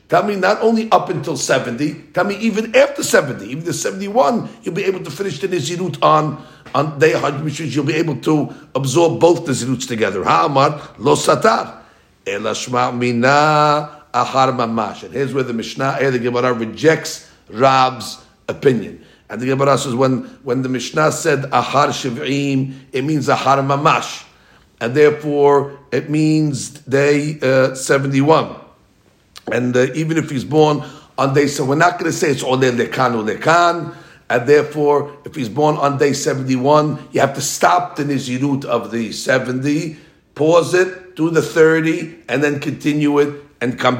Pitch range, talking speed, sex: 130-155 Hz, 155 wpm, male